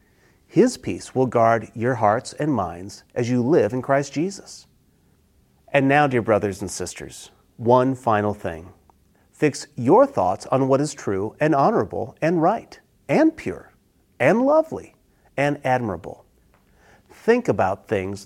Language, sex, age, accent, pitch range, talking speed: English, male, 40-59, American, 105-150 Hz, 140 wpm